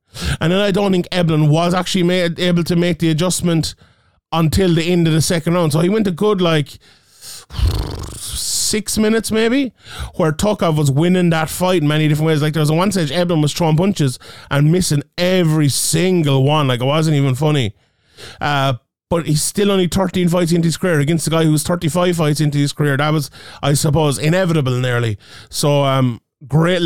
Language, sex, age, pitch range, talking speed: English, male, 30-49, 140-175 Hz, 195 wpm